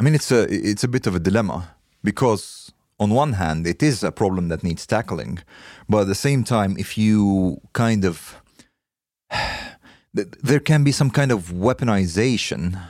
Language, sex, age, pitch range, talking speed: Swedish, male, 30-49, 95-130 Hz, 170 wpm